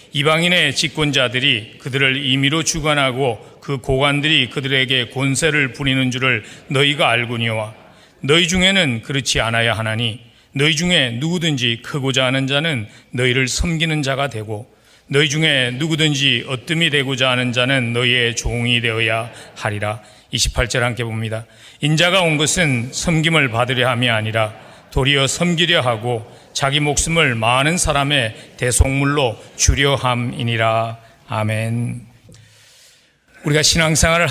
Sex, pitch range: male, 115-145 Hz